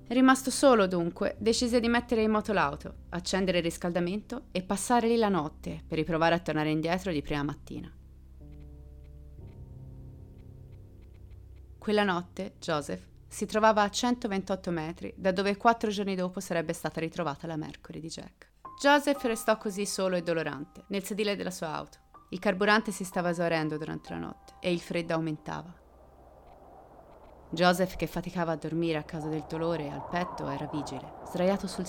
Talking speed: 155 wpm